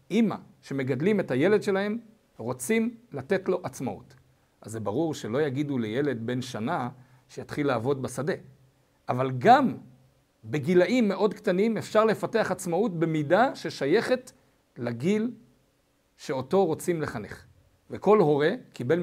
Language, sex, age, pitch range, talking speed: Hebrew, male, 50-69, 130-205 Hz, 115 wpm